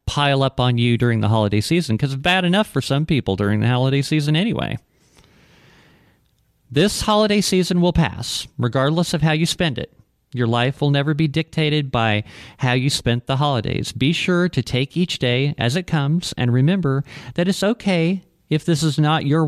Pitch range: 125-160 Hz